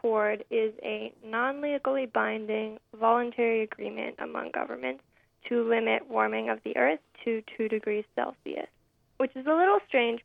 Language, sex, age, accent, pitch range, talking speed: English, female, 10-29, American, 220-255 Hz, 135 wpm